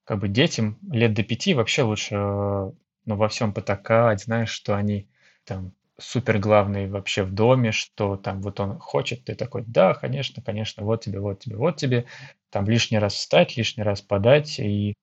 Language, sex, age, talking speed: Russian, male, 20-39, 180 wpm